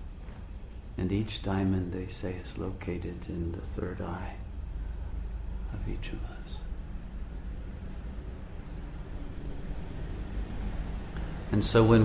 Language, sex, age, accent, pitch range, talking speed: English, male, 50-69, American, 75-100 Hz, 90 wpm